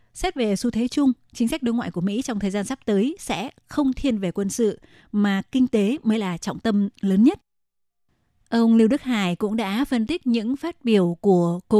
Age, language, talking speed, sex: 20-39, Vietnamese, 225 wpm, female